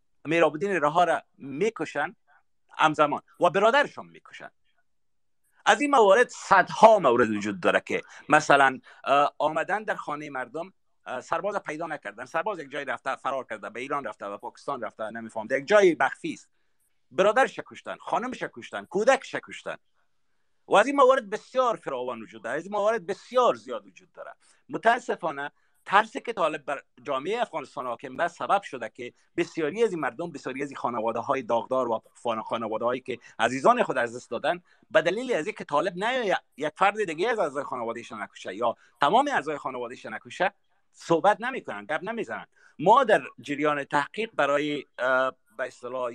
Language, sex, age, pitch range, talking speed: Persian, male, 50-69, 130-215 Hz, 155 wpm